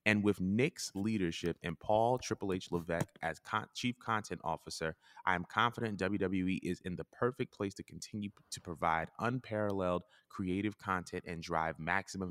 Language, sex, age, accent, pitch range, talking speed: English, male, 20-39, American, 85-110 Hz, 155 wpm